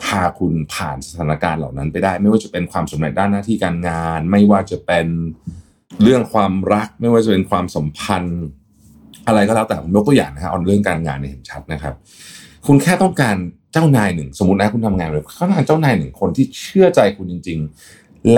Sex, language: male, Thai